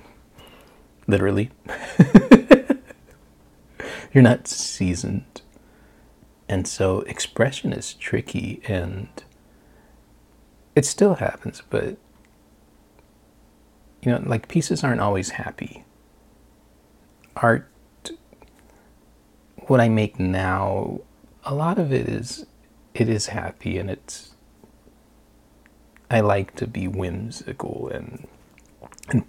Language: English